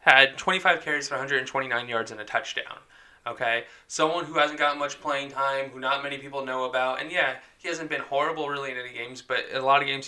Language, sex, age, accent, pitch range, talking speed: English, male, 20-39, American, 135-165 Hz, 230 wpm